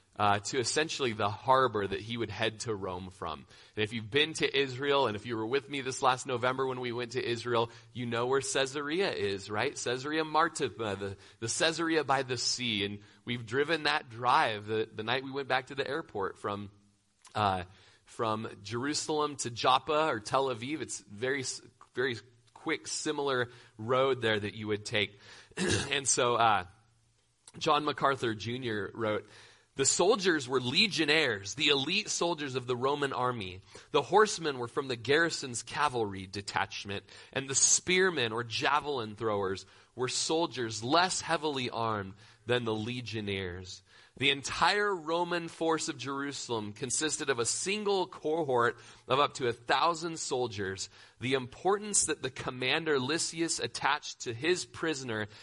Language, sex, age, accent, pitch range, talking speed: English, male, 30-49, American, 115-155 Hz, 160 wpm